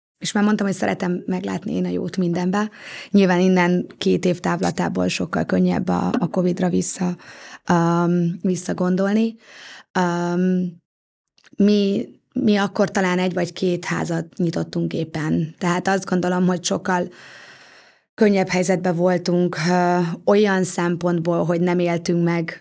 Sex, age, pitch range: female, 20-39, 170-190 Hz